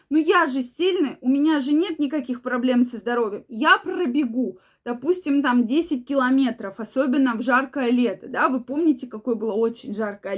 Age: 20-39